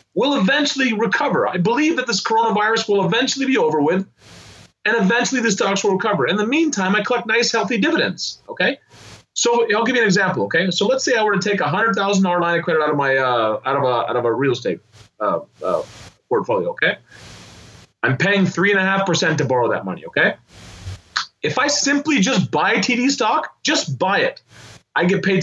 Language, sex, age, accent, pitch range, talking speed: English, male, 30-49, American, 160-235 Hz, 190 wpm